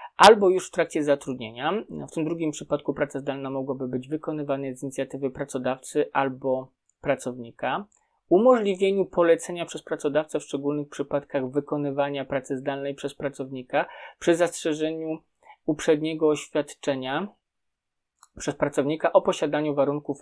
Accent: native